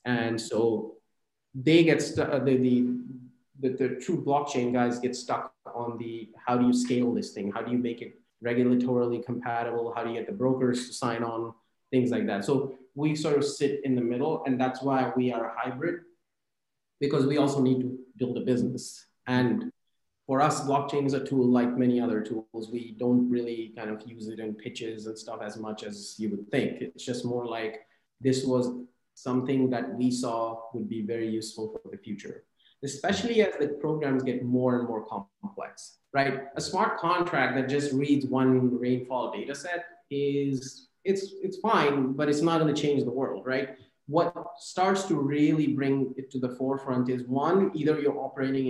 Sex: male